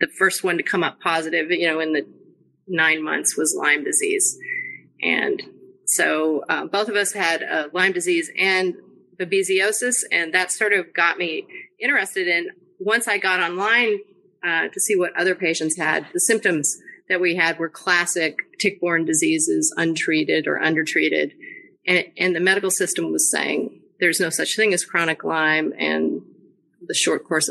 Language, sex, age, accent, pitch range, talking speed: English, female, 30-49, American, 165-245 Hz, 170 wpm